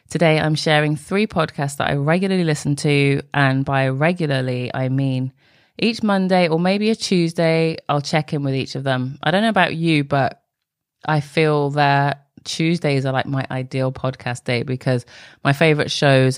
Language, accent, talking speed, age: English, British, 175 wpm, 20-39